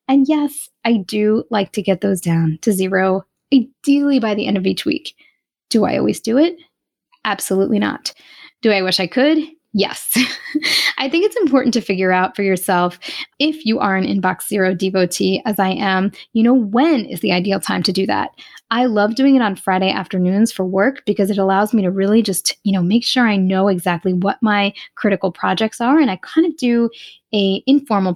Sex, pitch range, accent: female, 190-265 Hz, American